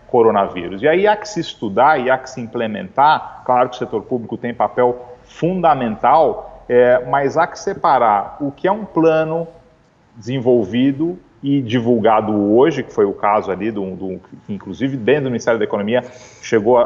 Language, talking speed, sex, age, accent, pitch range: Portuguese, 170 wpm, male, 40-59, Brazilian, 115-160 Hz